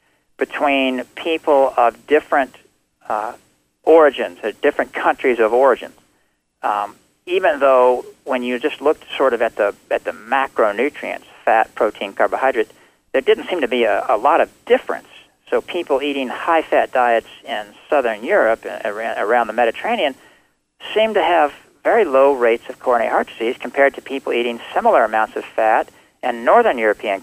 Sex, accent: male, American